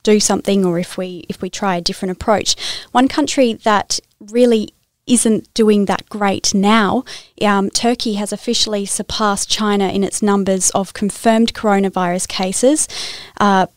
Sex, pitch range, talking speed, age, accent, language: female, 195-220 Hz, 150 wpm, 20-39, Australian, English